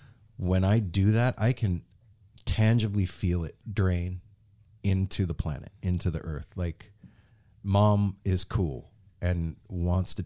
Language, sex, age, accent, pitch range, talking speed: English, male, 40-59, American, 90-120 Hz, 135 wpm